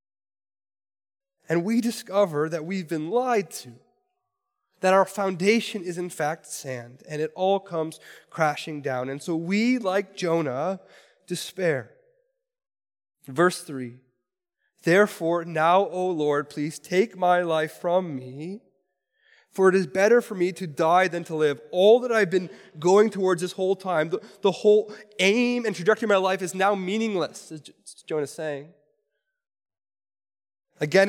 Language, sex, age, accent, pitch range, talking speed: English, male, 20-39, American, 145-195 Hz, 145 wpm